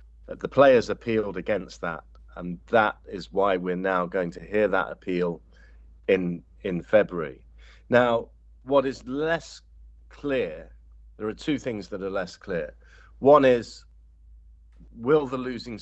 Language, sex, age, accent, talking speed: English, male, 40-59, British, 140 wpm